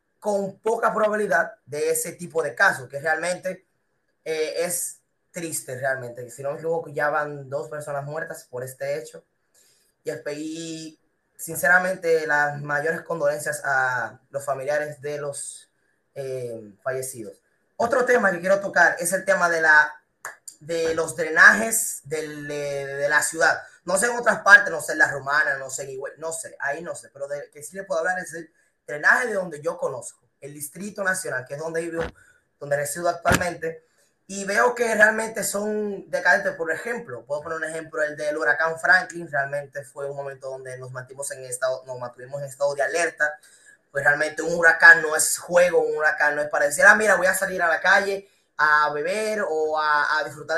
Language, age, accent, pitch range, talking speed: Spanish, 20-39, American, 145-185 Hz, 185 wpm